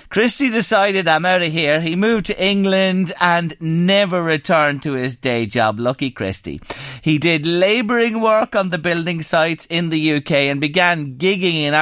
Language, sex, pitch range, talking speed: English, male, 135-185 Hz, 175 wpm